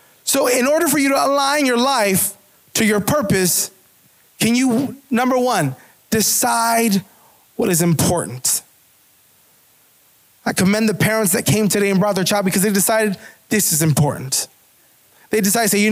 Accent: American